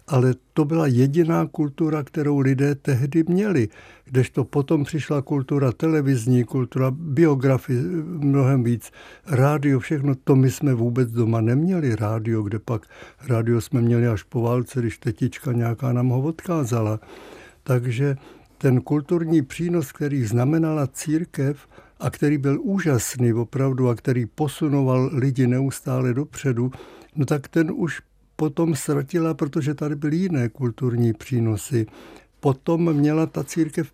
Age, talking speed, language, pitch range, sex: 60-79, 135 wpm, Czech, 125-160 Hz, male